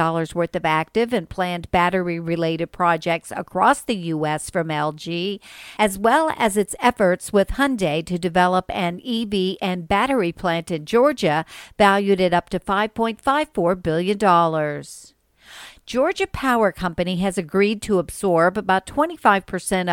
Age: 50-69